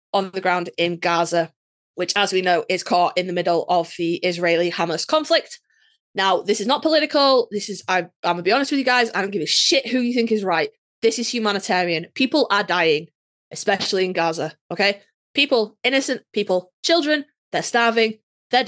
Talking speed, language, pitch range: 195 wpm, English, 180-235 Hz